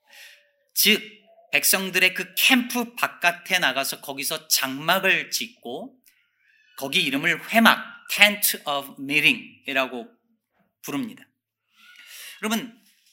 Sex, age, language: male, 40-59, Korean